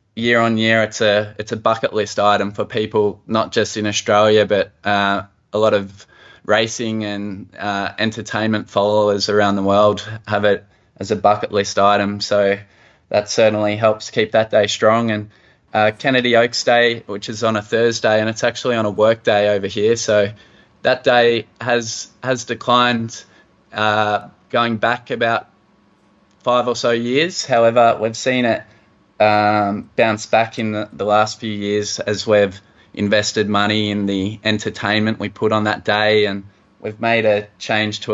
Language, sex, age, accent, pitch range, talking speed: English, male, 10-29, Australian, 105-115 Hz, 170 wpm